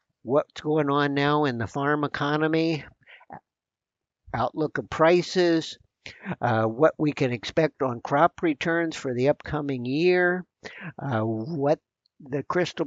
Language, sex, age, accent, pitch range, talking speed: English, male, 60-79, American, 125-155 Hz, 125 wpm